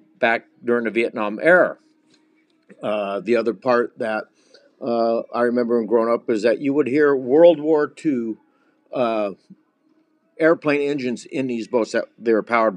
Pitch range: 115-145 Hz